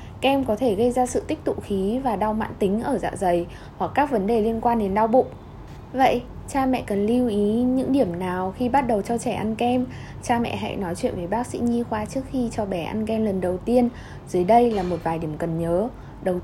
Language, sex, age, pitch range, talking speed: Vietnamese, female, 10-29, 185-245 Hz, 250 wpm